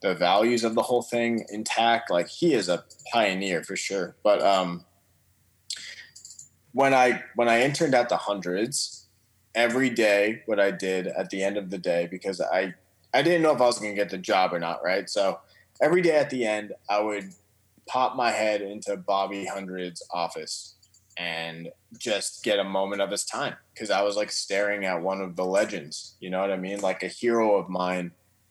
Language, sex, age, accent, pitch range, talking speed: English, male, 20-39, American, 95-120 Hz, 200 wpm